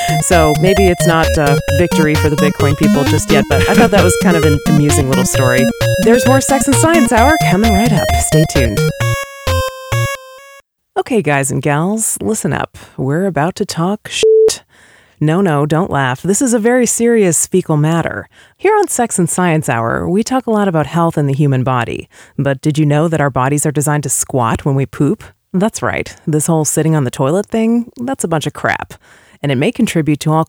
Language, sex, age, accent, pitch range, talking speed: English, female, 30-49, American, 140-205 Hz, 210 wpm